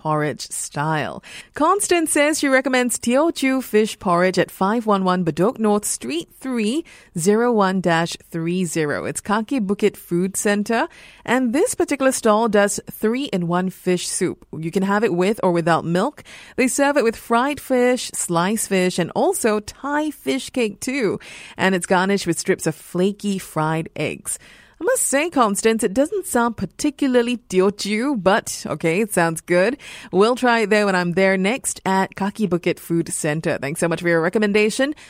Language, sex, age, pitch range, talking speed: English, female, 30-49, 180-245 Hz, 155 wpm